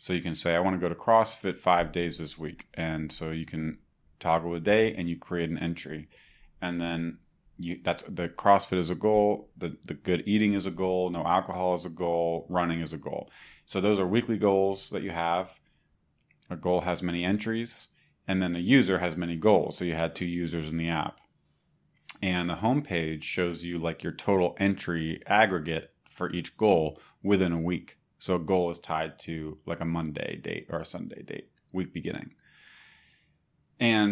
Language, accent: English, American